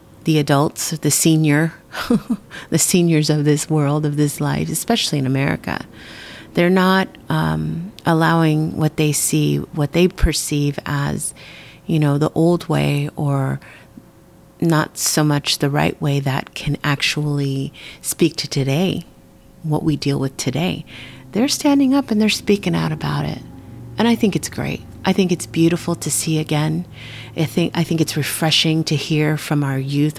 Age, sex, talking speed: 30-49, female, 160 wpm